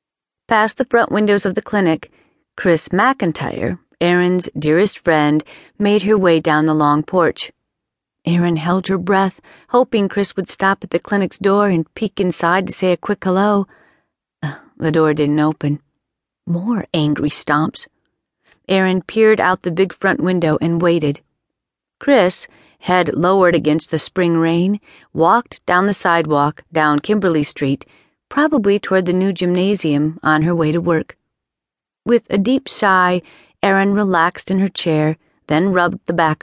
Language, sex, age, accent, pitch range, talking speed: English, female, 40-59, American, 160-205 Hz, 155 wpm